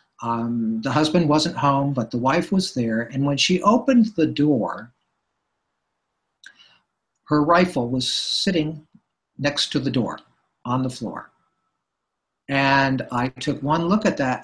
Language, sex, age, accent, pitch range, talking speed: English, male, 60-79, American, 135-185 Hz, 140 wpm